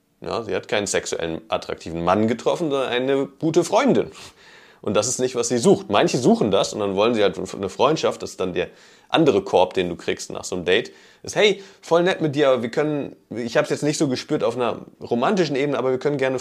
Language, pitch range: German, 100-135 Hz